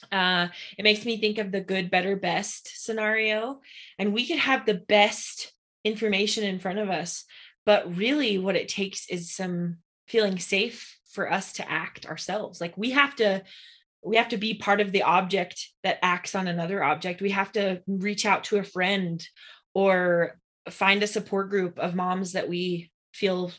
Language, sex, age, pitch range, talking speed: English, female, 20-39, 180-210 Hz, 180 wpm